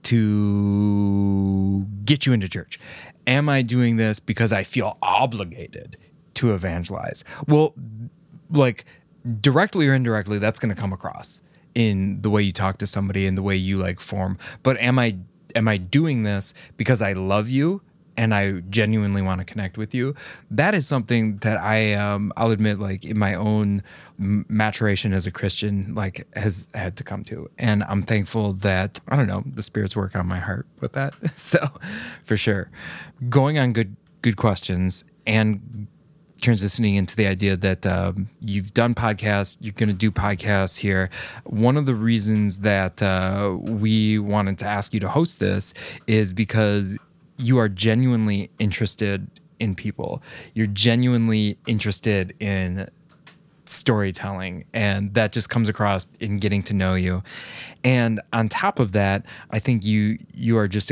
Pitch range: 100-120 Hz